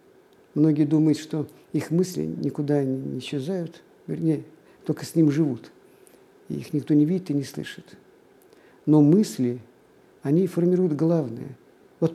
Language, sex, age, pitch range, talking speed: Russian, male, 50-69, 145-185 Hz, 135 wpm